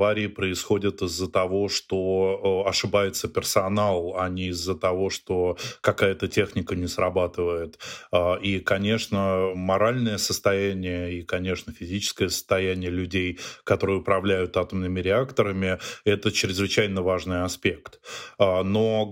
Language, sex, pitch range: Russian, male, 95-105 Hz